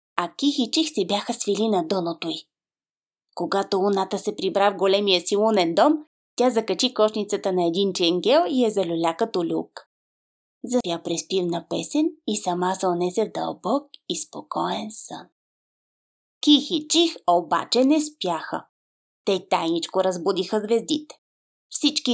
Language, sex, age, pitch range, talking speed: English, female, 20-39, 180-230 Hz, 145 wpm